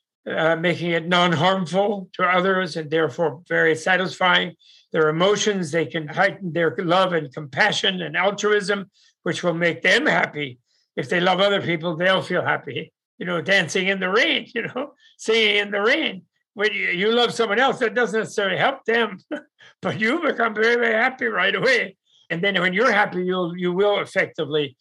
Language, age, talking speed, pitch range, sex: English, 60-79, 175 wpm, 165-205 Hz, male